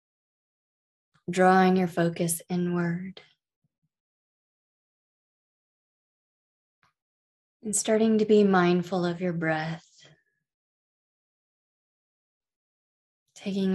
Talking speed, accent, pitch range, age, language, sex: 55 wpm, American, 155-185 Hz, 20-39, English, female